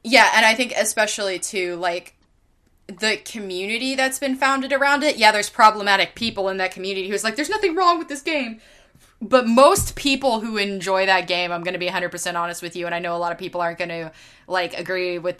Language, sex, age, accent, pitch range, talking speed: English, female, 20-39, American, 170-215 Hz, 215 wpm